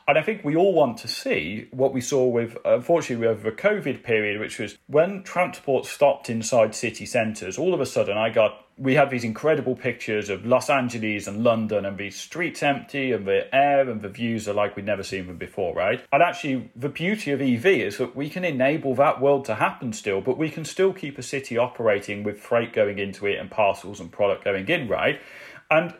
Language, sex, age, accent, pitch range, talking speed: English, male, 40-59, British, 110-145 Hz, 220 wpm